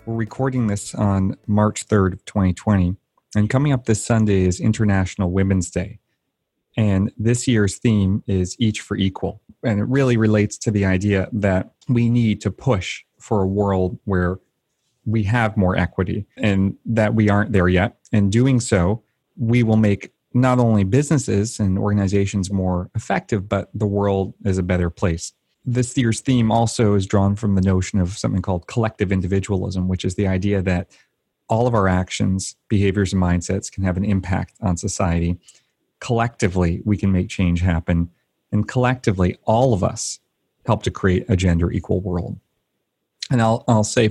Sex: male